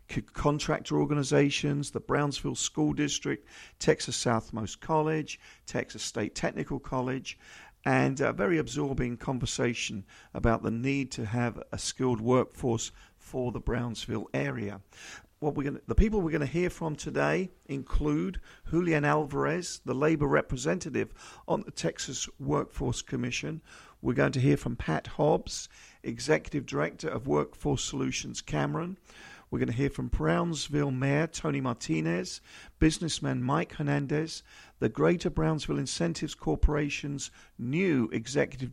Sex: male